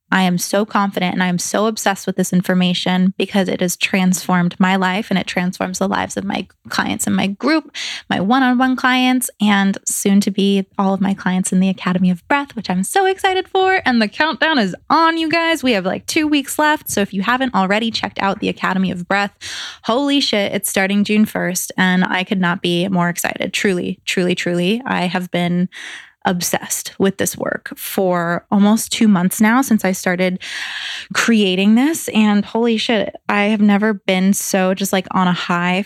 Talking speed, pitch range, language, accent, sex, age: 200 wpm, 185-225 Hz, English, American, female, 20-39